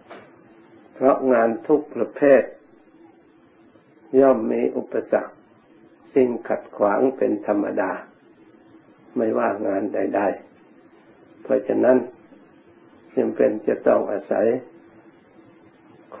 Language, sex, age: Thai, male, 60-79